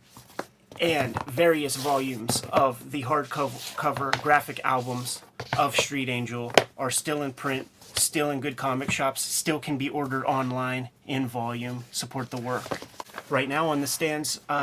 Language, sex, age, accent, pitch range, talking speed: English, male, 30-49, American, 130-150 Hz, 145 wpm